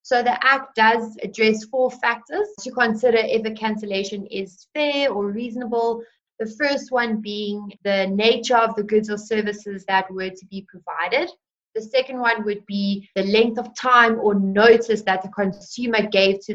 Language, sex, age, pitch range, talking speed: English, female, 20-39, 195-230 Hz, 175 wpm